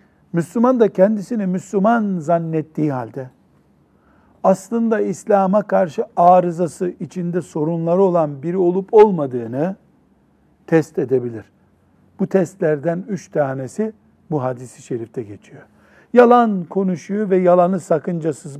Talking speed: 100 wpm